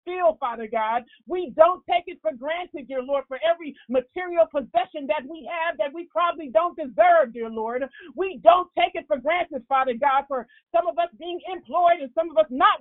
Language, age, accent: English, 40-59, American